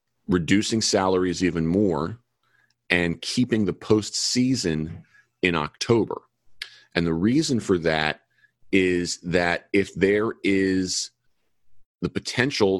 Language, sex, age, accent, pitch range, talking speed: English, male, 40-59, American, 85-100 Hz, 105 wpm